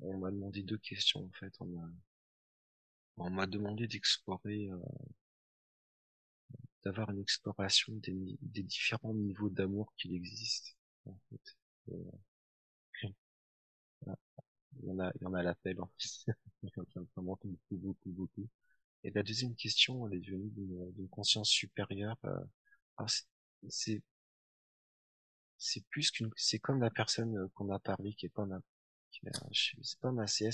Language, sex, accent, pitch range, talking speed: French, male, French, 95-110 Hz, 155 wpm